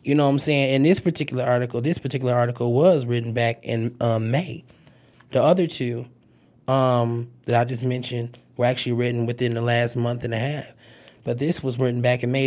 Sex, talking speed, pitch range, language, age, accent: male, 205 wpm, 120-135 Hz, English, 20-39, American